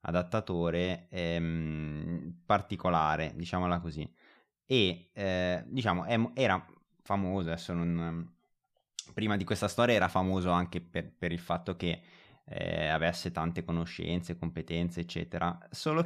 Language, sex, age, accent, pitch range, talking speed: Italian, male, 20-39, native, 85-100 Hz, 110 wpm